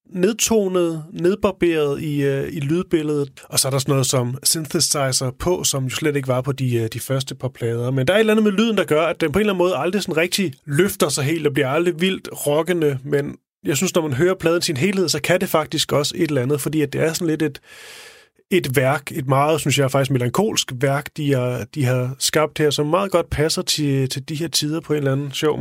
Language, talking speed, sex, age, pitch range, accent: Danish, 255 wpm, male, 30-49, 135-170 Hz, native